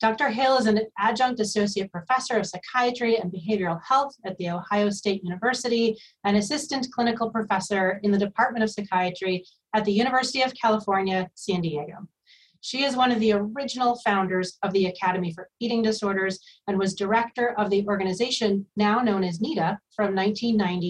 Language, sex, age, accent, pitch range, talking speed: English, female, 30-49, American, 185-230 Hz, 165 wpm